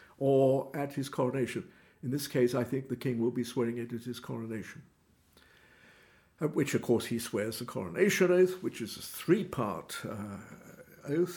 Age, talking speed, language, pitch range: 60-79, 170 wpm, English, 115-145 Hz